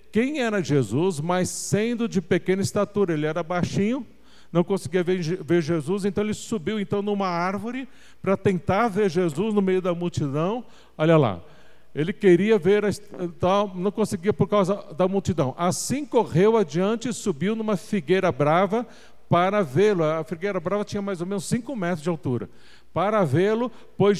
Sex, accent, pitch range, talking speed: male, Brazilian, 150-205 Hz, 155 wpm